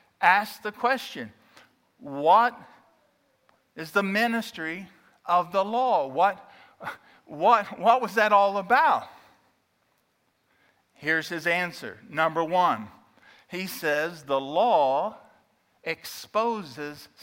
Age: 50-69